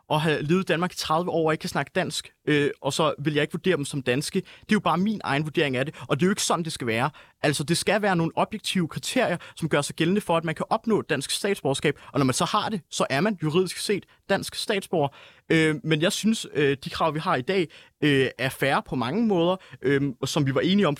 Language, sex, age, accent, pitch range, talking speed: Danish, male, 30-49, native, 145-190 Hz, 270 wpm